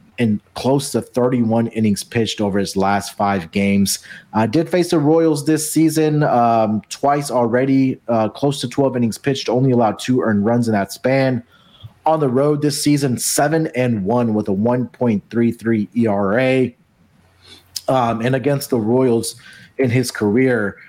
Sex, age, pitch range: male, 30-49, 105-130 Hz